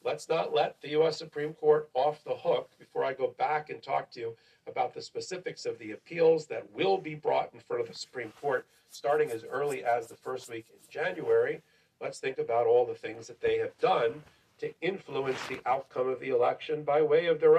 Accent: American